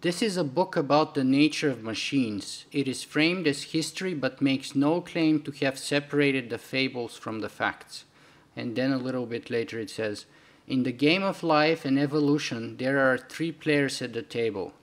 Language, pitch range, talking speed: English, 130-155 Hz, 195 wpm